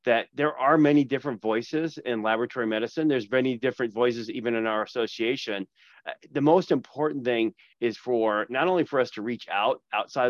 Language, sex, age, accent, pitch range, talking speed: English, male, 30-49, American, 105-125 Hz, 180 wpm